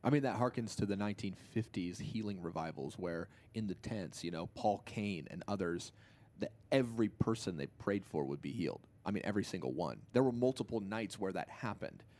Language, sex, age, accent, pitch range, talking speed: English, male, 30-49, American, 95-115 Hz, 190 wpm